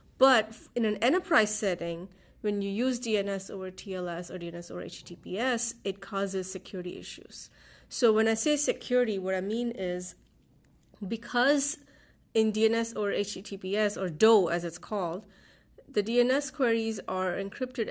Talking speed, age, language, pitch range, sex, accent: 145 wpm, 30-49, English, 185-235 Hz, female, Indian